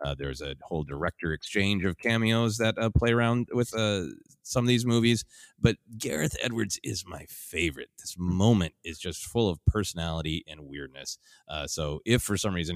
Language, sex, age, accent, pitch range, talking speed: English, male, 30-49, American, 85-120 Hz, 185 wpm